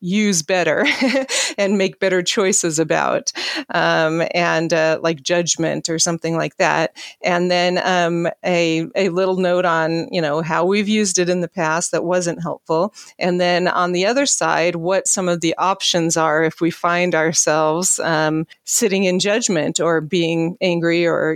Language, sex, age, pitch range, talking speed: English, female, 40-59, 165-185 Hz, 170 wpm